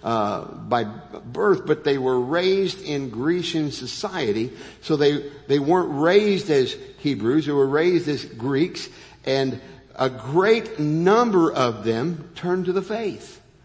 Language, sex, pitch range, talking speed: English, male, 135-185 Hz, 140 wpm